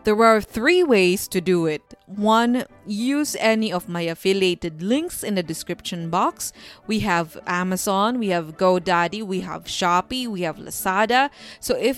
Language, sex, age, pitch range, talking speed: English, female, 20-39, 180-220 Hz, 160 wpm